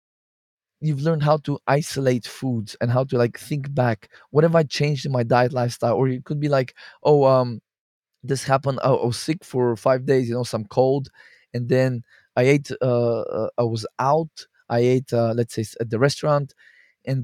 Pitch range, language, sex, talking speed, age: 120-135 Hz, English, male, 200 wpm, 20-39